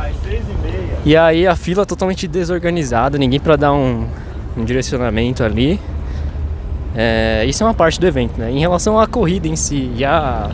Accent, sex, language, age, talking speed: Brazilian, male, Portuguese, 20-39, 165 wpm